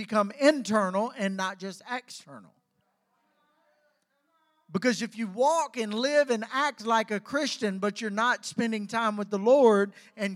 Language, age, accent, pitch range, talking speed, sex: English, 50-69, American, 210-265 Hz, 150 wpm, male